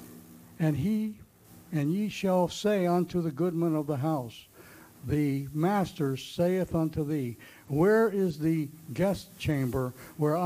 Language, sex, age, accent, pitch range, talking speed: English, male, 60-79, American, 140-180 Hz, 130 wpm